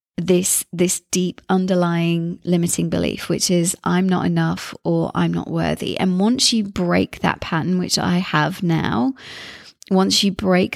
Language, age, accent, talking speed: English, 30-49, British, 155 wpm